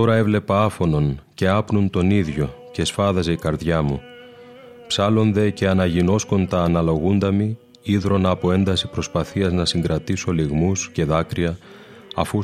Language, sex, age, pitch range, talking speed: Greek, male, 30-49, 85-100 Hz, 130 wpm